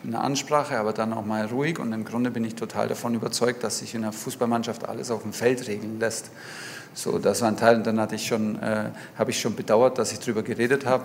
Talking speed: 235 wpm